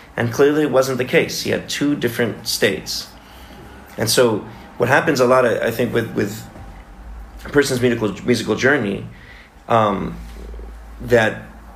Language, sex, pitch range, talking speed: English, male, 100-125 Hz, 150 wpm